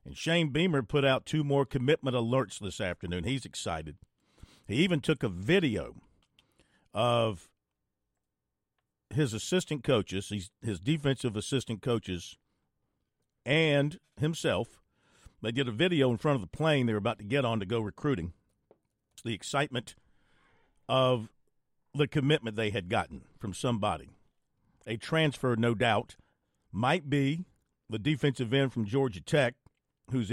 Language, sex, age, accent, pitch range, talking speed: English, male, 50-69, American, 110-145 Hz, 140 wpm